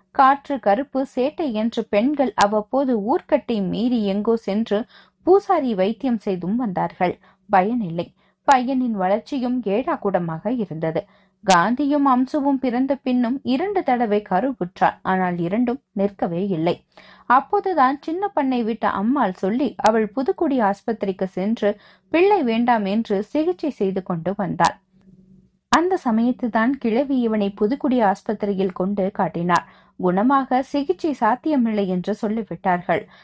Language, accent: Tamil, native